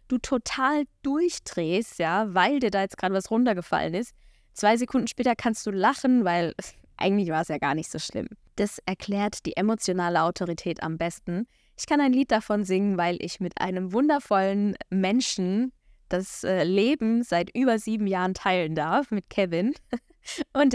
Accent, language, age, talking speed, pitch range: German, German, 20-39, 170 wpm, 185-235 Hz